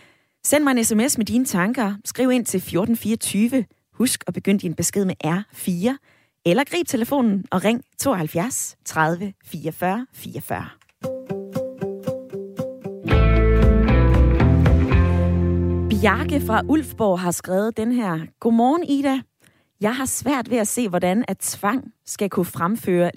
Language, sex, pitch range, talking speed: Danish, female, 170-230 Hz, 120 wpm